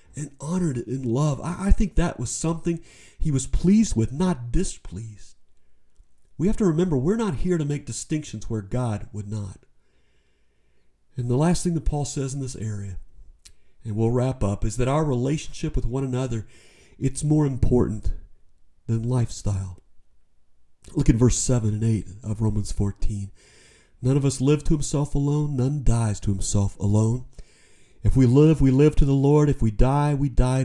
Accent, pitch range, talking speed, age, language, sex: American, 105-145 Hz, 175 wpm, 40-59, English, male